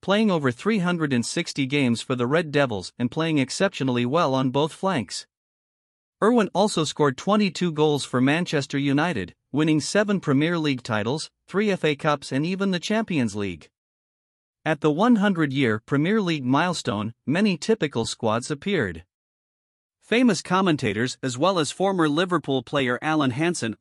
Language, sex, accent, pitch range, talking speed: English, male, American, 130-180 Hz, 140 wpm